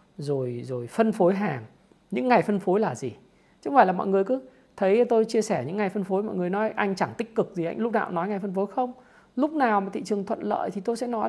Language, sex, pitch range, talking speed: Vietnamese, male, 170-230 Hz, 280 wpm